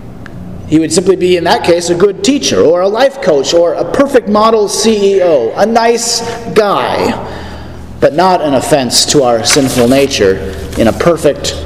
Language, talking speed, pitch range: English, 170 wpm, 130-180 Hz